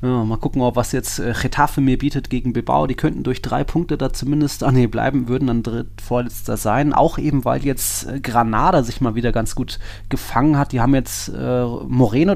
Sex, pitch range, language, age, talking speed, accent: male, 110-130 Hz, German, 30-49, 190 wpm, German